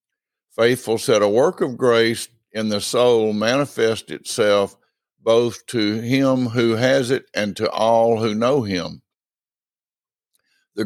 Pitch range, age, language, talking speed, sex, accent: 95-115 Hz, 60-79, English, 135 wpm, male, American